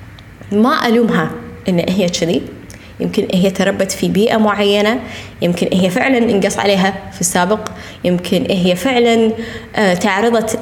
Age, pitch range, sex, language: 20-39, 180-230 Hz, female, Arabic